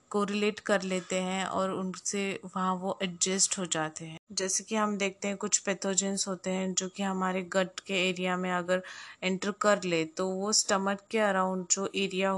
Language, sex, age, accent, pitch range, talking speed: Hindi, female, 20-39, native, 180-205 Hz, 190 wpm